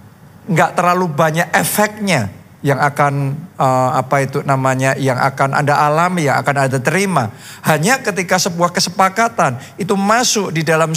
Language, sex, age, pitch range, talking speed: Indonesian, male, 50-69, 140-210 Hz, 140 wpm